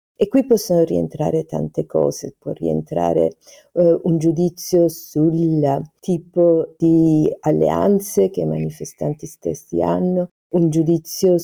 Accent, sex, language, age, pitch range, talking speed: native, female, Italian, 50-69, 140-170 Hz, 115 wpm